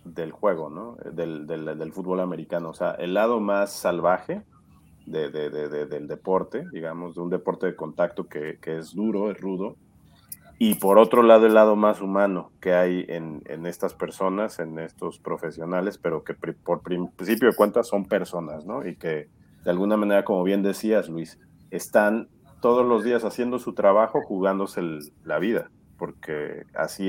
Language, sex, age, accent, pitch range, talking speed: Spanish, male, 40-59, Mexican, 90-110 Hz, 175 wpm